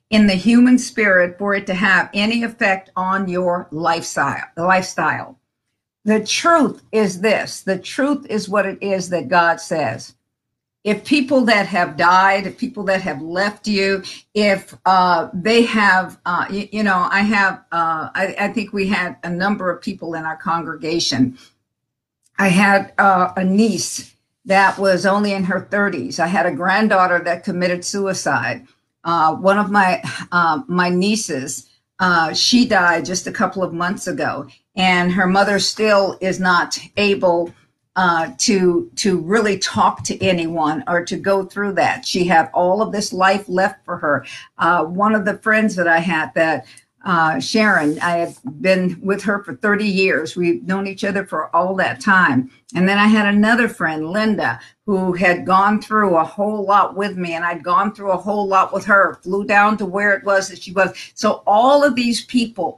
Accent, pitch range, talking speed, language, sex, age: American, 175-205 Hz, 180 wpm, English, female, 50-69